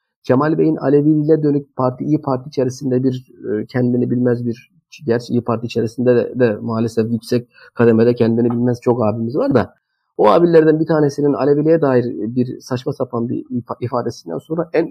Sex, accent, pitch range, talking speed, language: male, native, 115-150 Hz, 160 wpm, Turkish